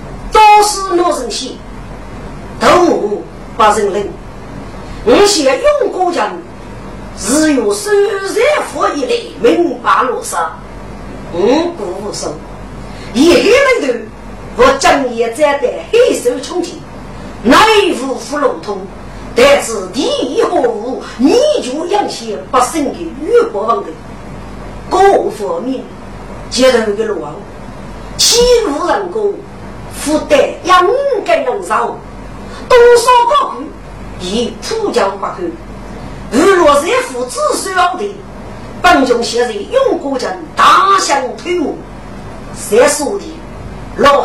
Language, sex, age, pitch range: Chinese, female, 50-69, 270-430 Hz